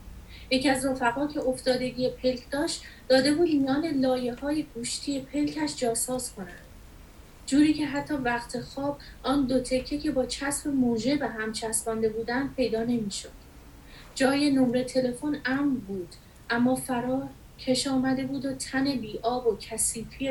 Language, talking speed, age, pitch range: Persian, 150 wpm, 30-49, 230-280 Hz